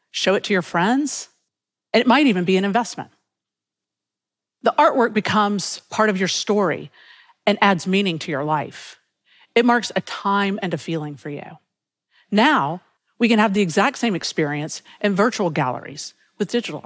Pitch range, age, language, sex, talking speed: 175-235 Hz, 50-69, Arabic, female, 165 wpm